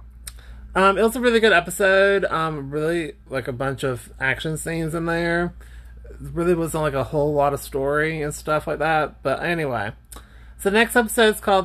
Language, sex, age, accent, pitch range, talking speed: English, male, 30-49, American, 135-170 Hz, 195 wpm